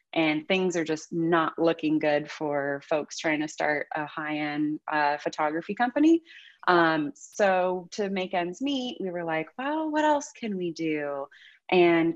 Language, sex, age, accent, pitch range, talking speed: English, female, 30-49, American, 170-235 Hz, 165 wpm